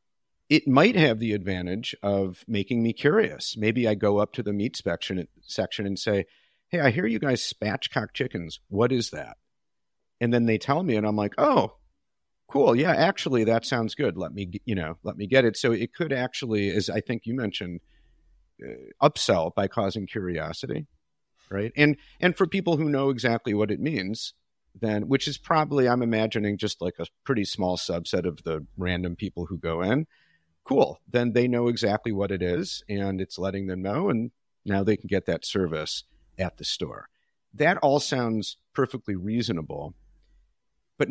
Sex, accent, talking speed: male, American, 180 wpm